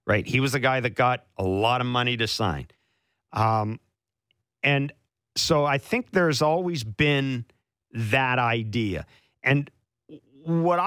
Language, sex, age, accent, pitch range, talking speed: English, male, 50-69, American, 115-165 Hz, 140 wpm